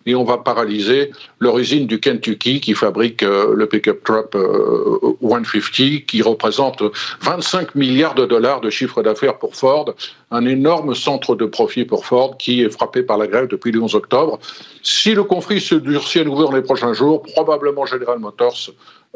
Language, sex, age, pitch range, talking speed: French, male, 50-69, 125-170 Hz, 175 wpm